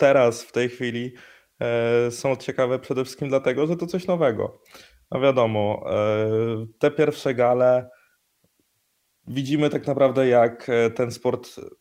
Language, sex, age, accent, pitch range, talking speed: Polish, male, 20-39, native, 110-135 Hz, 120 wpm